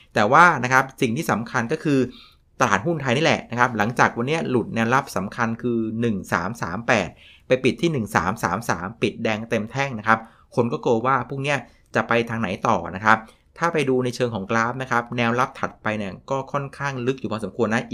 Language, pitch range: Thai, 110-130 Hz